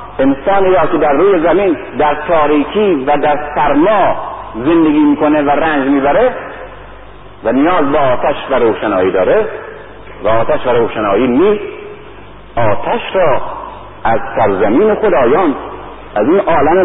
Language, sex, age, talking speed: Persian, male, 50-69, 130 wpm